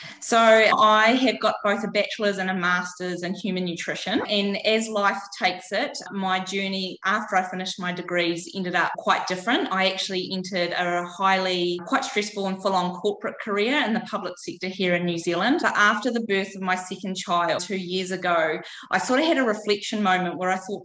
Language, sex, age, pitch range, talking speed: English, female, 20-39, 175-200 Hz, 195 wpm